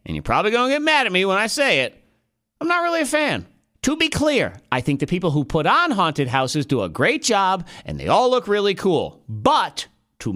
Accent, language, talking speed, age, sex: American, English, 245 wpm, 40-59, male